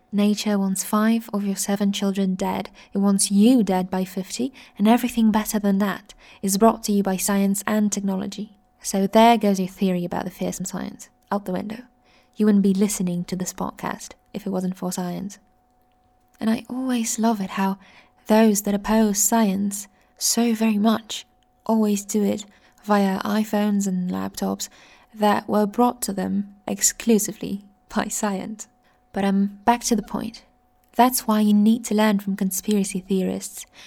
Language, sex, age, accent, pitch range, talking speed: English, female, 10-29, British, 195-225 Hz, 165 wpm